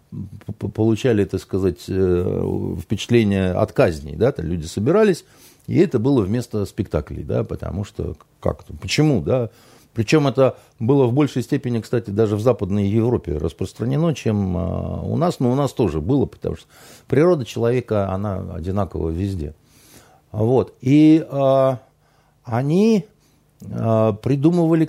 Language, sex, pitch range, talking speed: Russian, male, 100-150 Hz, 130 wpm